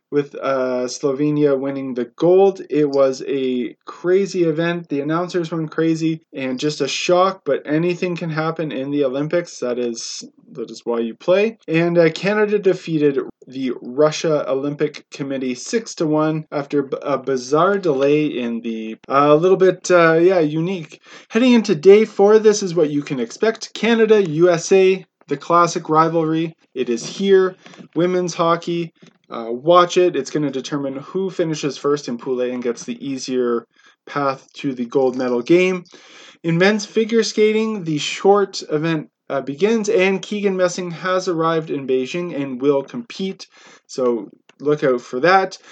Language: English